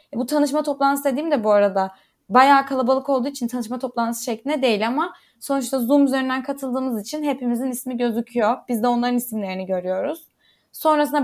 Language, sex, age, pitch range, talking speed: Turkish, female, 10-29, 210-265 Hz, 160 wpm